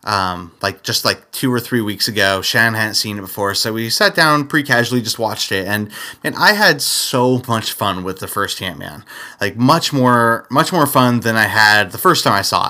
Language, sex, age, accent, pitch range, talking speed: English, male, 30-49, American, 105-140 Hz, 225 wpm